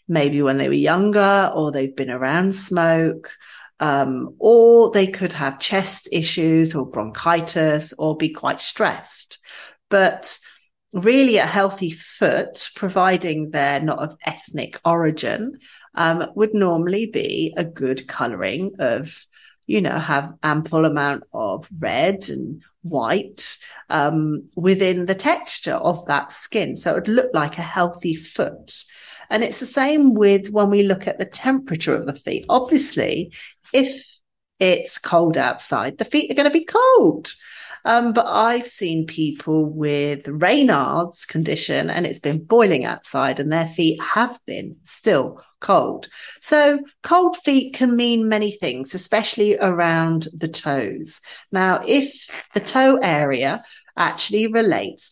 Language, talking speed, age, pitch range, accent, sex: English, 140 wpm, 40-59, 155-235 Hz, British, female